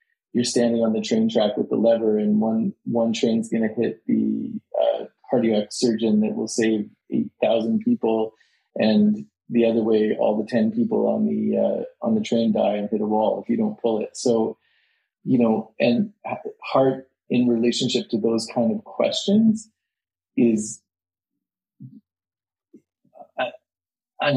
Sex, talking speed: male, 160 wpm